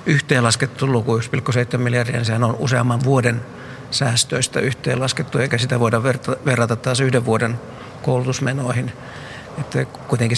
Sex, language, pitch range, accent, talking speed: male, Finnish, 115-130 Hz, native, 110 wpm